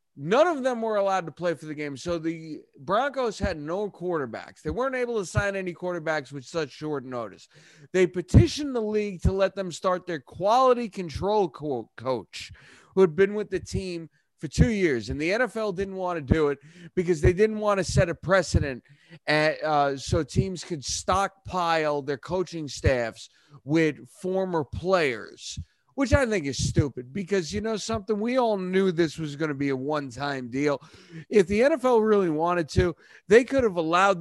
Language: English